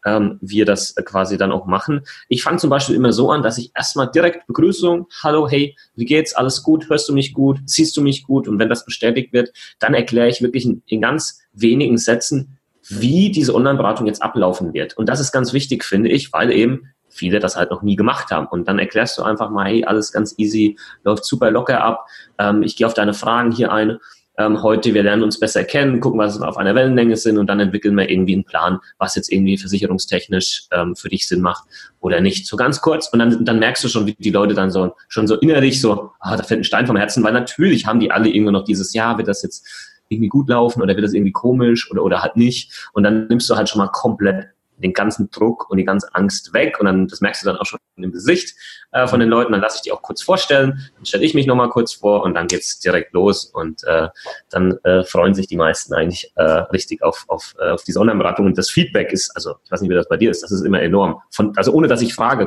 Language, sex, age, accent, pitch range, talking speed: German, male, 30-49, German, 100-130 Hz, 250 wpm